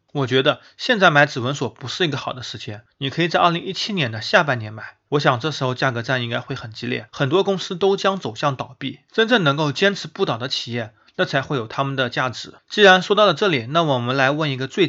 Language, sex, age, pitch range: Chinese, male, 30-49, 125-170 Hz